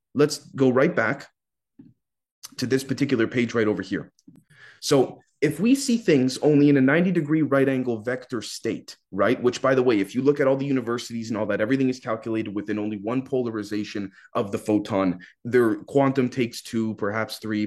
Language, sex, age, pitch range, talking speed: English, male, 30-49, 115-145 Hz, 190 wpm